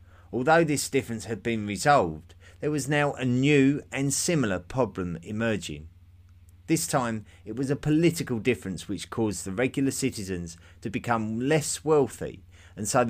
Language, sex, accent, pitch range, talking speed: English, male, British, 90-135 Hz, 150 wpm